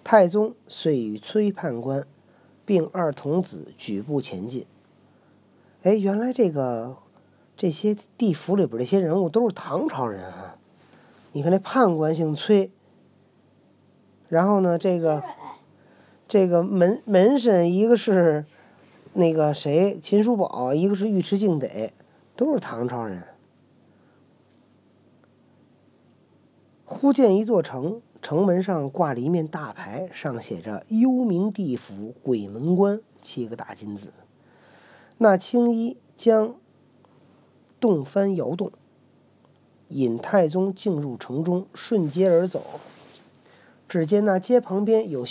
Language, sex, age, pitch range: Chinese, male, 40-59, 145-210 Hz